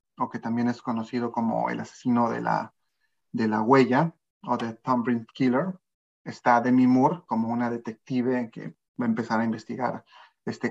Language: Spanish